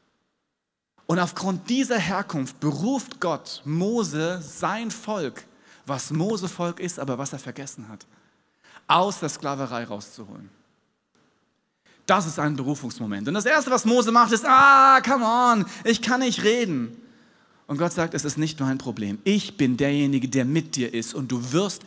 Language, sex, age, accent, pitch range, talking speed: German, male, 40-59, German, 135-205 Hz, 160 wpm